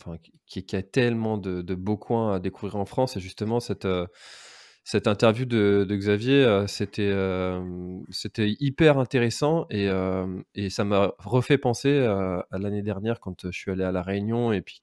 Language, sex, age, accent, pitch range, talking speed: French, male, 20-39, French, 95-115 Hz, 180 wpm